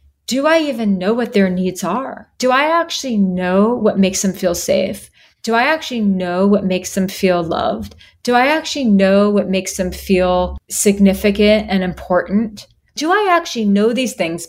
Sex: female